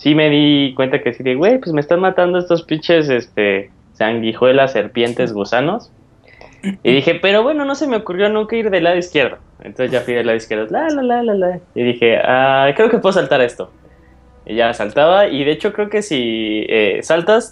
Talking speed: 205 wpm